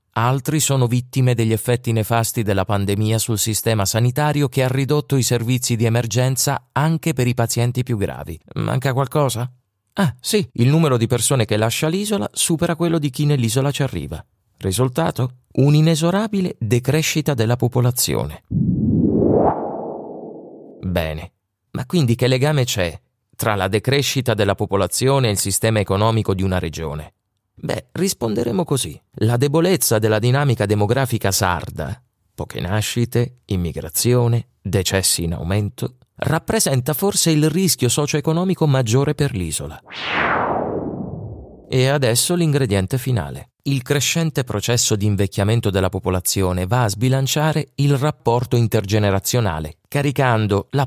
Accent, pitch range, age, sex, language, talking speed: native, 105-140 Hz, 30-49, male, Italian, 125 wpm